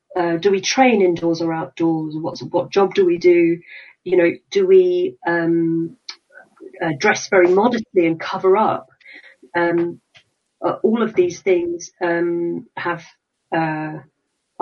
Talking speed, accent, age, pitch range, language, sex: 140 wpm, British, 40-59, 170-215 Hz, English, female